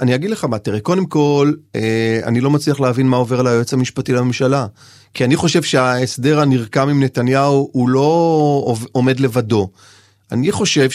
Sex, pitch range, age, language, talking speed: male, 125-185 Hz, 30-49, Hebrew, 165 wpm